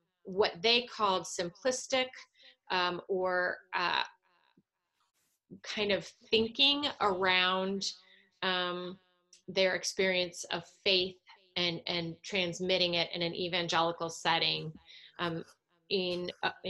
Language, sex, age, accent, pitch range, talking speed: English, female, 30-49, American, 180-220 Hz, 95 wpm